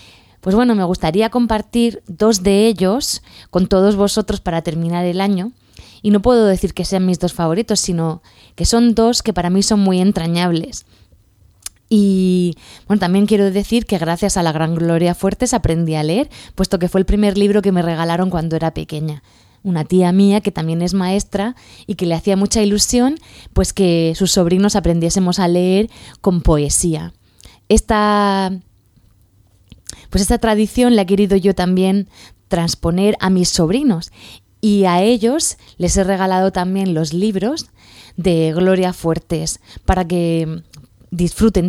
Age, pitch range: 20-39, 165-210 Hz